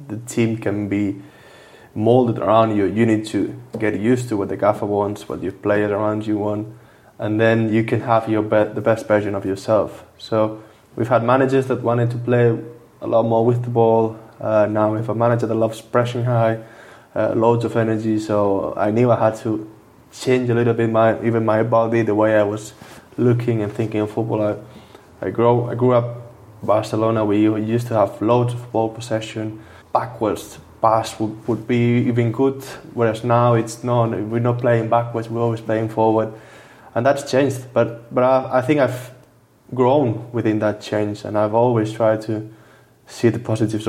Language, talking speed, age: English, 195 wpm, 20-39